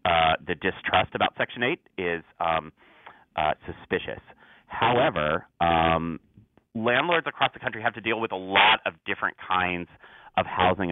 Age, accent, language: 30-49, American, English